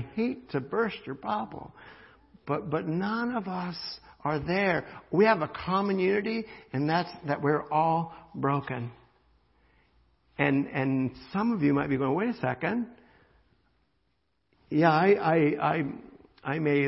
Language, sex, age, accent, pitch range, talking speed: English, male, 60-79, American, 145-200 Hz, 145 wpm